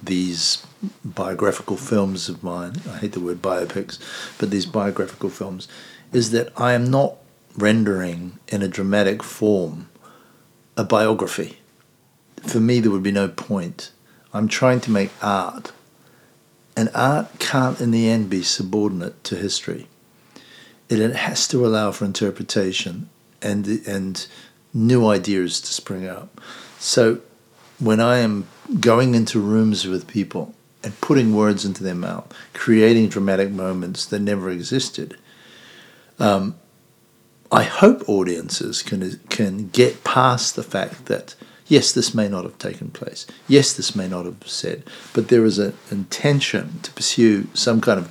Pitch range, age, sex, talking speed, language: 95-115 Hz, 50-69, male, 145 wpm, English